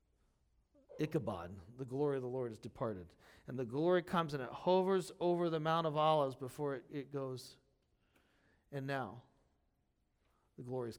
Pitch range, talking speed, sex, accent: 130-195 Hz, 160 wpm, male, American